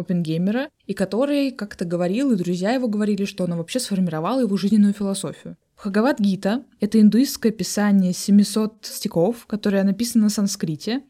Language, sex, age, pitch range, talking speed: Russian, female, 20-39, 185-235 Hz, 145 wpm